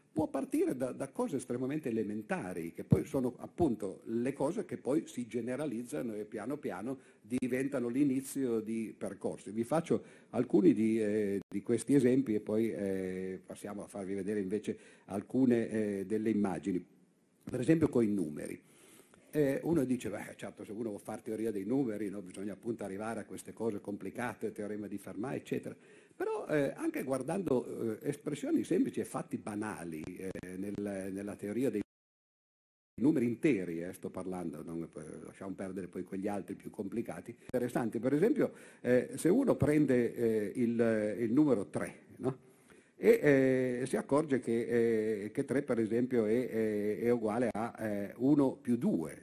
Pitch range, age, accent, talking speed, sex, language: 100-125 Hz, 50-69, native, 160 wpm, male, Italian